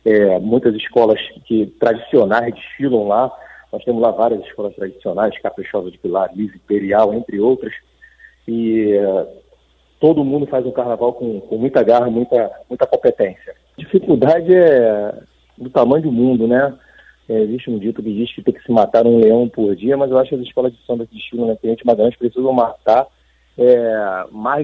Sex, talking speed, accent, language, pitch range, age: male, 185 wpm, Brazilian, Portuguese, 110-130 Hz, 40-59